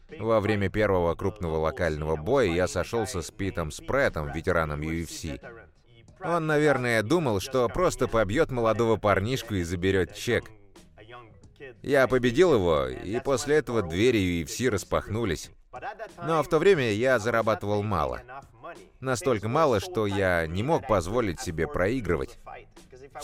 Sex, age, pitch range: male, 30-49, 95-125 Hz